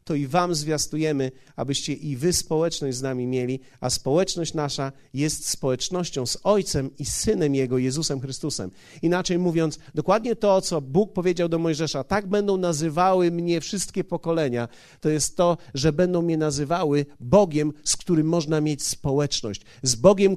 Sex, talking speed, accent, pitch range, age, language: male, 155 wpm, native, 150-200 Hz, 40-59, Polish